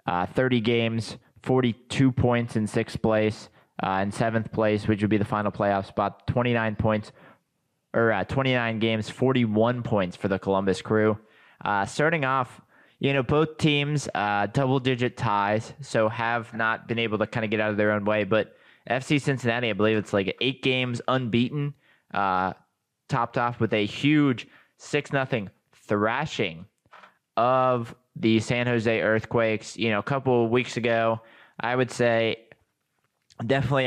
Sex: male